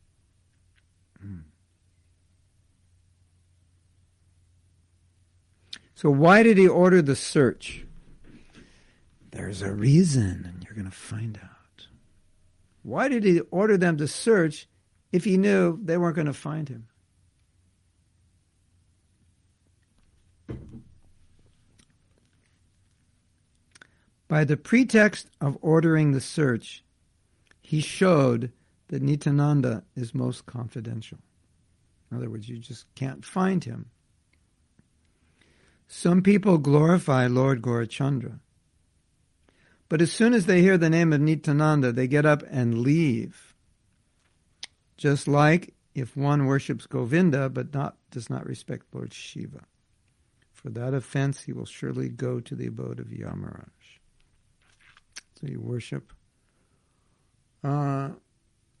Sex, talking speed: male, 105 wpm